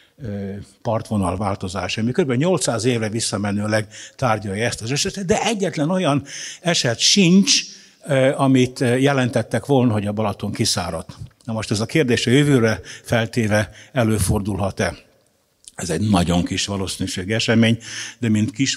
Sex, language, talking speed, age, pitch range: male, Hungarian, 130 wpm, 60-79, 100-135 Hz